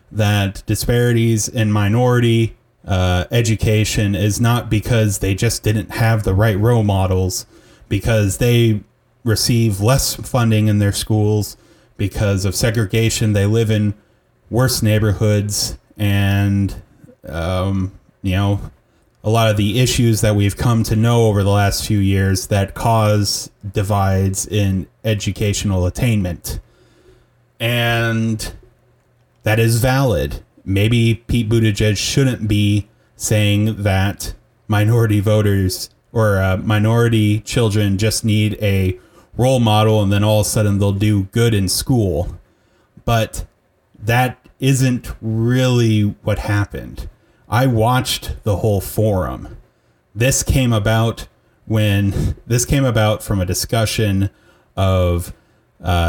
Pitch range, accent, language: 100-115 Hz, American, English